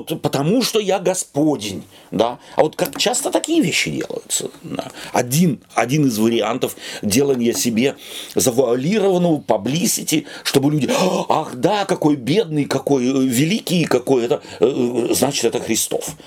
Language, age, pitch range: Russian, 40-59, 105-160 Hz